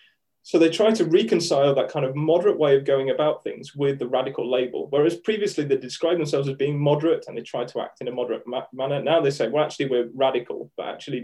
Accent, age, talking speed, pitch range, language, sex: British, 20-39, 235 wpm, 130-170 Hz, English, male